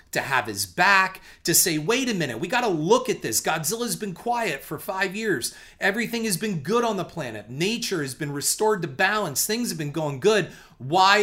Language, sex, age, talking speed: English, male, 30-49, 220 wpm